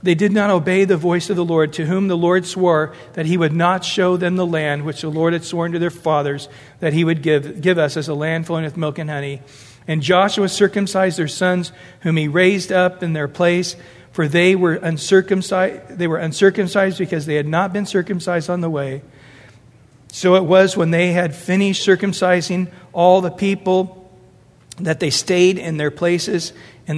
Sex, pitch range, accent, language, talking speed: male, 155-200 Hz, American, English, 200 wpm